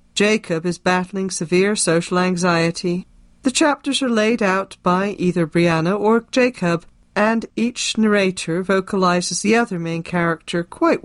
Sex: female